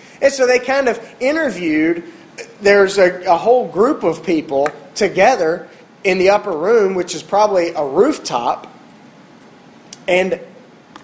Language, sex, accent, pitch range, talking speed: English, male, American, 170-230 Hz, 130 wpm